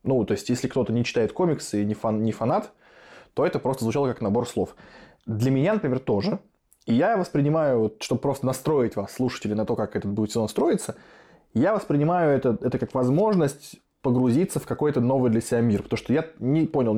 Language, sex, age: Russian, male, 20-39